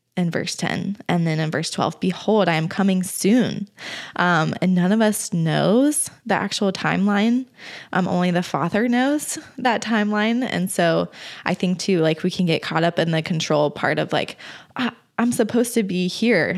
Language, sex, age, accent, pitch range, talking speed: English, female, 20-39, American, 170-215 Hz, 185 wpm